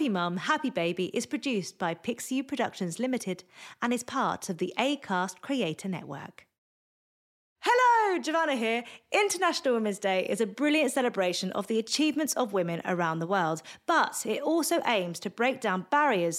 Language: English